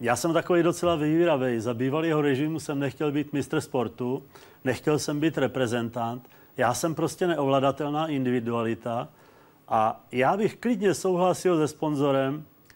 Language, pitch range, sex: Czech, 135-170 Hz, male